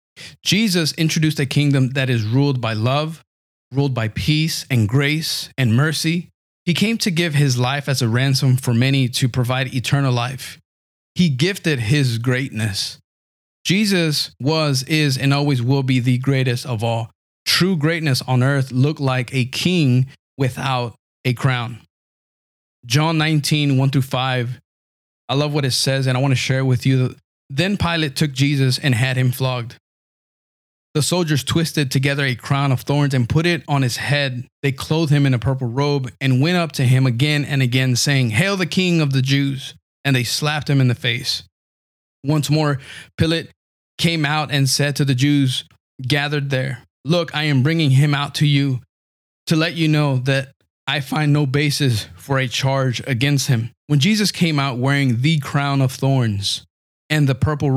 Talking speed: 175 wpm